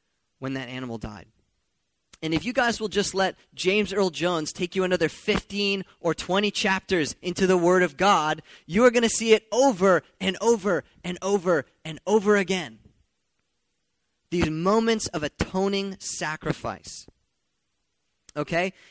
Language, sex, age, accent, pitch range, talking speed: English, male, 20-39, American, 135-190 Hz, 145 wpm